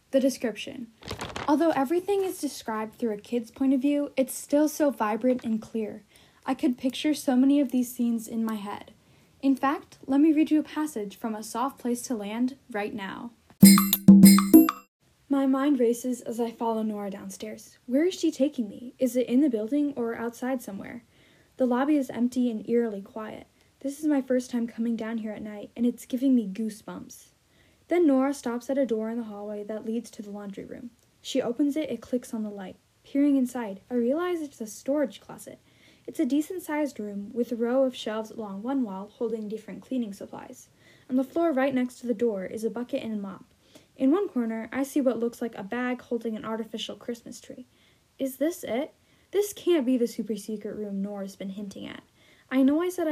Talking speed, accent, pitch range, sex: 205 wpm, American, 220-275 Hz, female